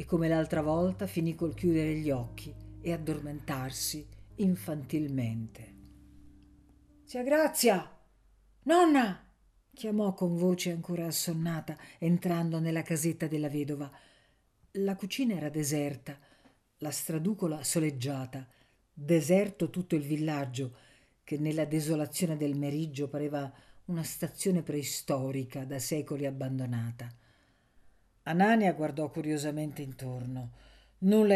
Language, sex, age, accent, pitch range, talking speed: Italian, female, 50-69, native, 140-175 Hz, 100 wpm